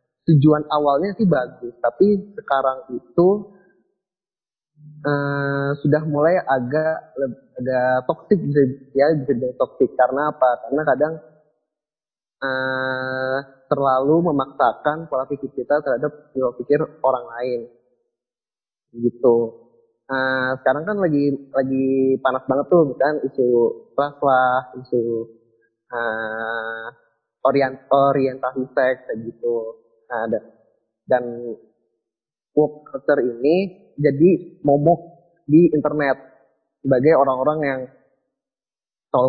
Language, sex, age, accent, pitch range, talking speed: Indonesian, male, 20-39, native, 130-160 Hz, 95 wpm